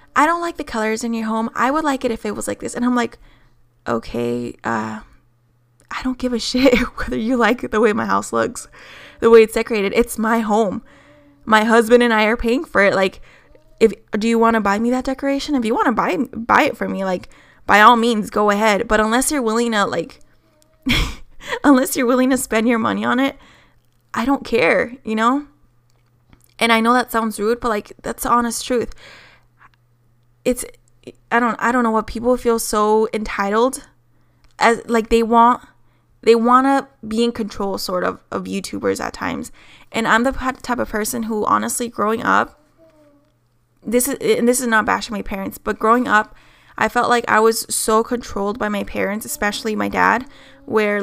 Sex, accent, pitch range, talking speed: female, American, 195-240 Hz, 200 wpm